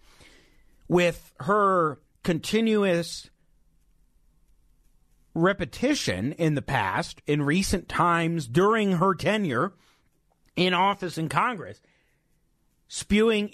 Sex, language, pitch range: male, English, 140-185 Hz